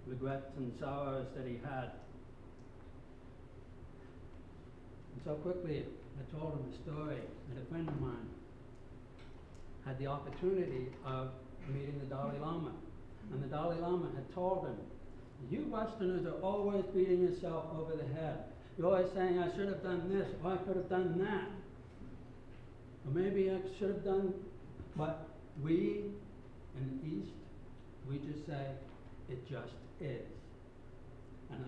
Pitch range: 130-165 Hz